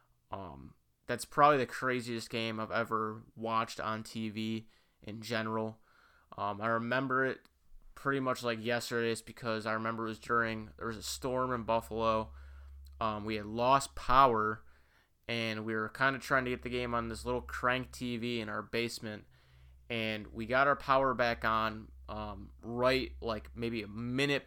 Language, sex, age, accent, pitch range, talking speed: English, male, 20-39, American, 110-120 Hz, 170 wpm